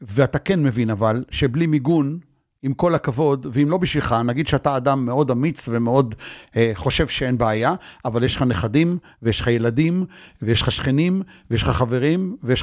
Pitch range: 110-145 Hz